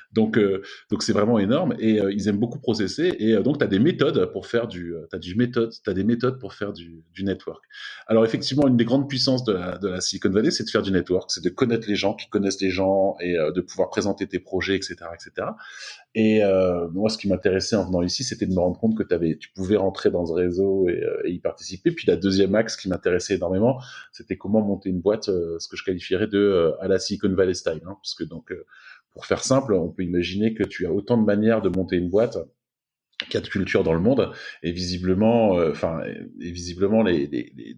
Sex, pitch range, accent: male, 90-120 Hz, French